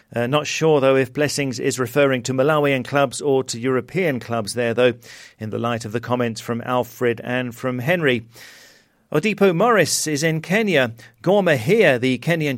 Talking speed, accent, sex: 175 wpm, British, male